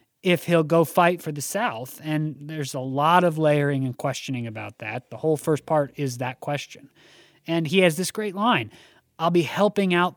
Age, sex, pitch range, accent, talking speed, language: 30-49, male, 145-190 Hz, American, 200 wpm, English